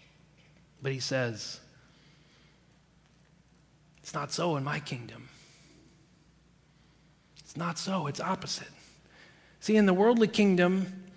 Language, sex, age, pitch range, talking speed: English, male, 30-49, 155-195 Hz, 100 wpm